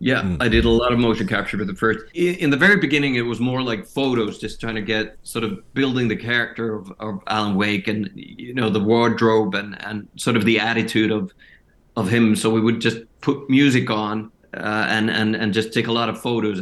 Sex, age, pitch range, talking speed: male, 30-49, 105-125 Hz, 230 wpm